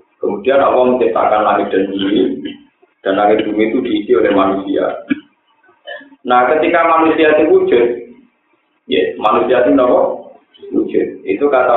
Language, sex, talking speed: Indonesian, male, 120 wpm